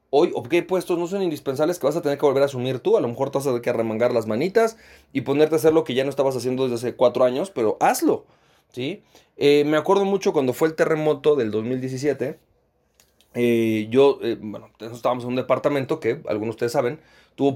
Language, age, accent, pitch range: Spanish, 30-49, Mexican, 115-155 Hz